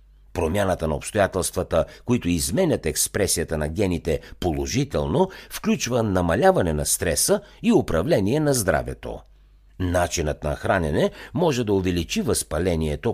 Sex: male